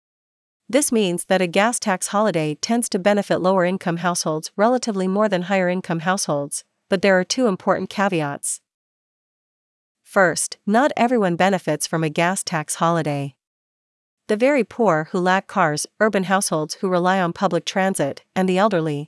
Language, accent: English, American